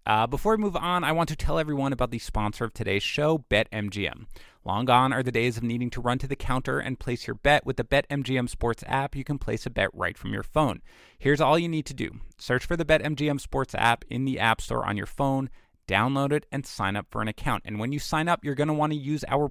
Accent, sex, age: American, male, 30-49